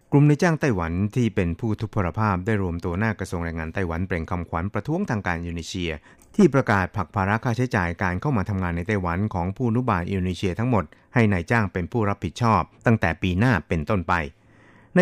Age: 60-79